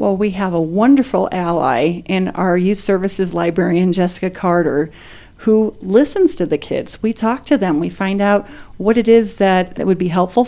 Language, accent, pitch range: English, American, 180-210 Hz